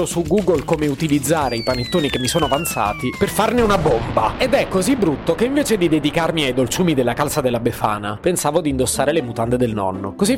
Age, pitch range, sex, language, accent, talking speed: 30-49, 130-175 Hz, male, Italian, native, 210 wpm